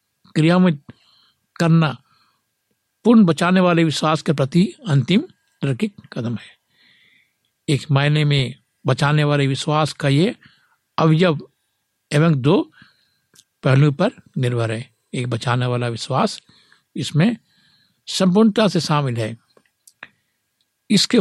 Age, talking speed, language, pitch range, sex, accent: 60-79, 105 wpm, Hindi, 130-170 Hz, male, native